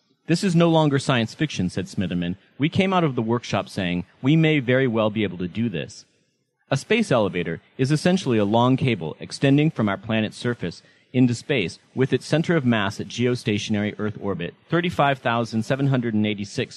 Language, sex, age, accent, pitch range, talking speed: English, male, 30-49, American, 105-140 Hz, 175 wpm